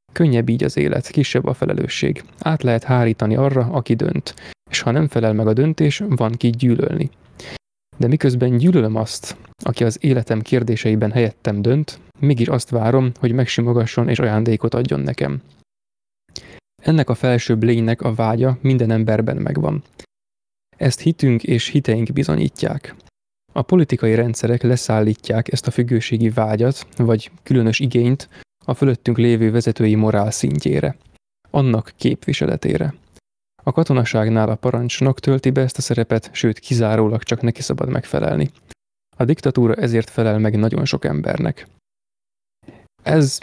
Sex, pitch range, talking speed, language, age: male, 110-130 Hz, 135 wpm, Hungarian, 20-39